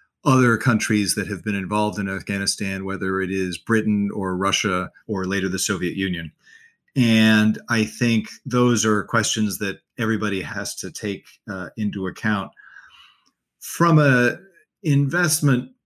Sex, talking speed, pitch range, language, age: male, 135 wpm, 100-125 Hz, English, 40-59